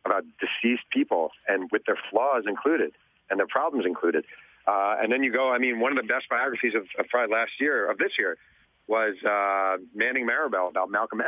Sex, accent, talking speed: male, American, 200 wpm